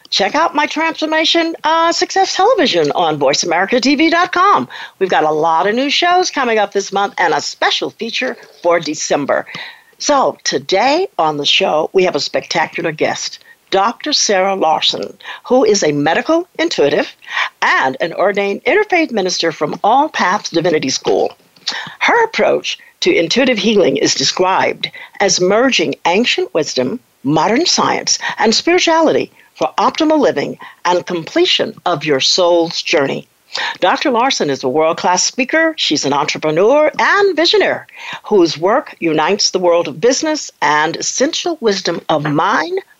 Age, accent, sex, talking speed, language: 50-69, American, female, 140 wpm, English